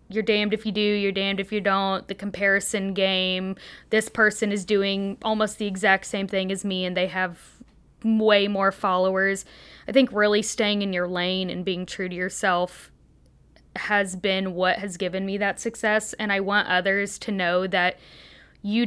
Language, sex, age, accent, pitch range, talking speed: English, female, 20-39, American, 190-215 Hz, 185 wpm